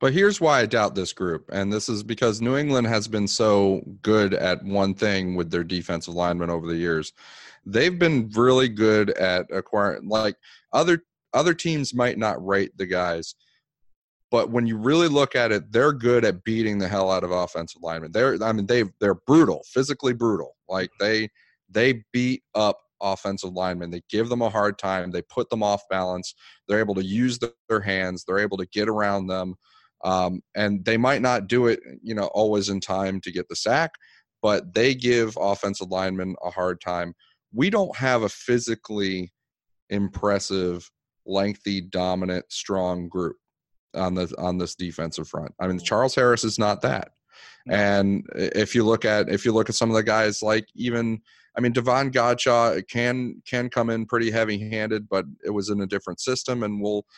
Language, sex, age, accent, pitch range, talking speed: English, male, 30-49, American, 95-120 Hz, 190 wpm